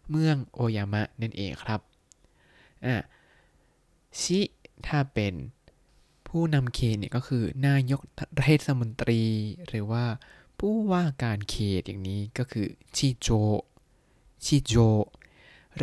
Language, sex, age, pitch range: Thai, male, 20-39, 105-135 Hz